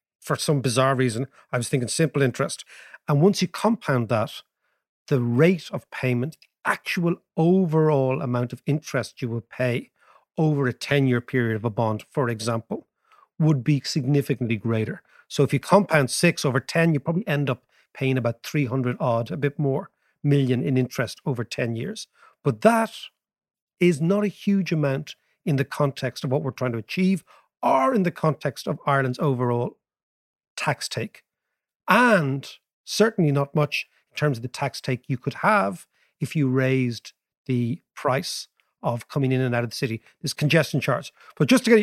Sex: male